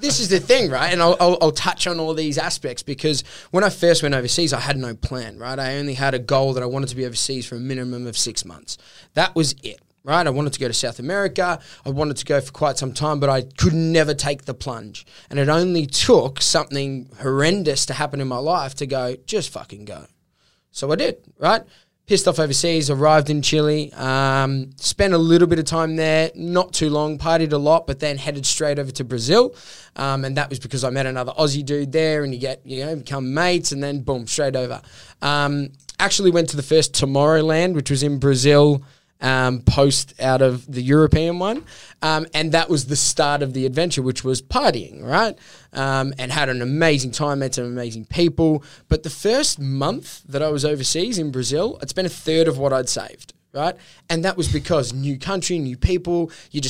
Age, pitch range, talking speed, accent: 20-39, 135-160 Hz, 220 wpm, Australian